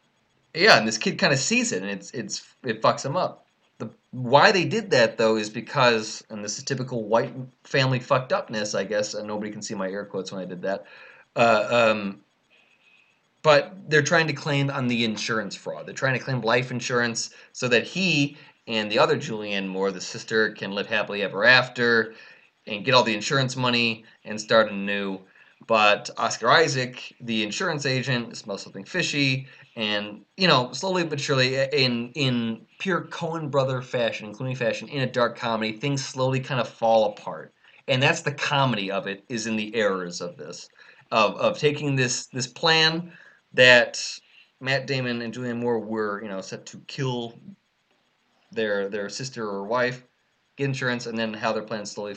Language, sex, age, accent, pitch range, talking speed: English, male, 20-39, American, 110-140 Hz, 185 wpm